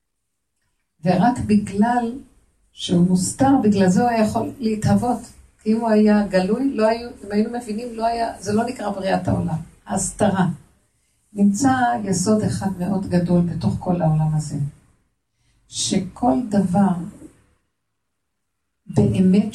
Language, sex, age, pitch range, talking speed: Hebrew, female, 50-69, 180-235 Hz, 125 wpm